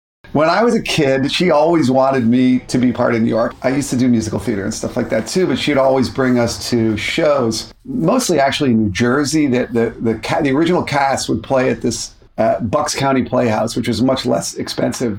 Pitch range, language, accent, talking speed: 115-135 Hz, English, American, 230 wpm